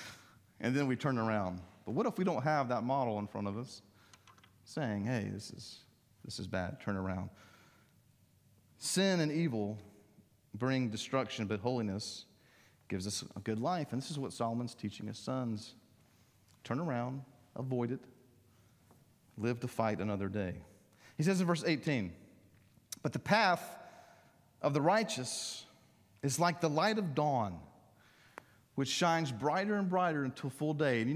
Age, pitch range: 40-59, 110-160 Hz